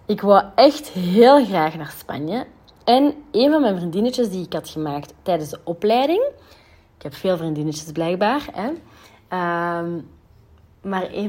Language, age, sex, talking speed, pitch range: Dutch, 30-49, female, 140 wpm, 170-250 Hz